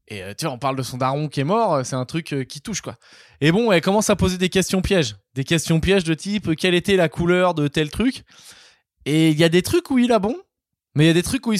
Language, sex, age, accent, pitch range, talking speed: French, male, 20-39, French, 130-175 Hz, 290 wpm